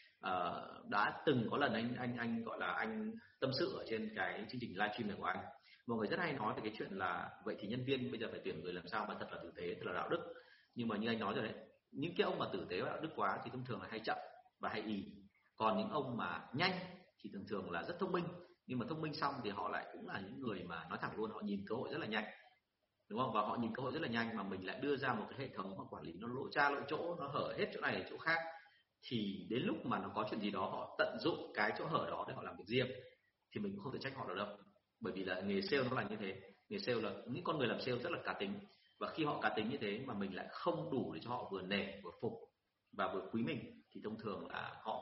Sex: male